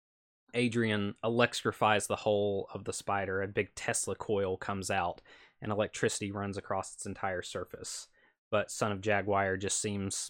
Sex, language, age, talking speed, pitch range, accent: male, English, 20-39, 150 wpm, 100-115 Hz, American